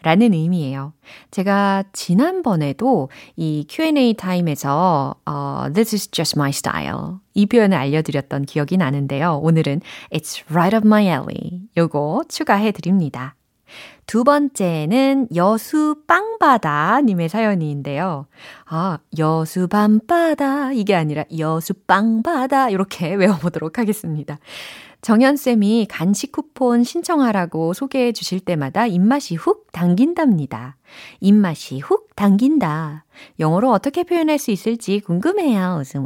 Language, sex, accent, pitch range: Korean, female, native, 155-230 Hz